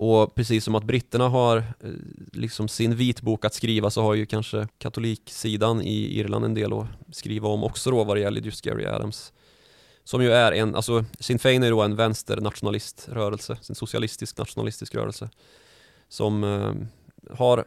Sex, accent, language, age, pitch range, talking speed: male, native, Swedish, 20-39, 105-125 Hz, 170 wpm